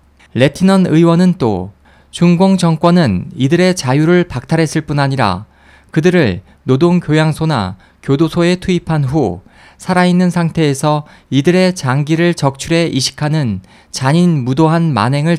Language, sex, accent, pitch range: Korean, male, native, 125-175 Hz